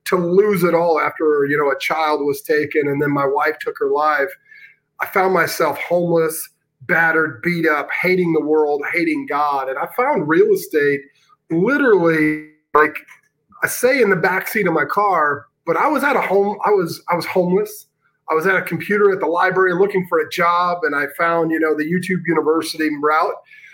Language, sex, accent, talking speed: English, male, American, 195 wpm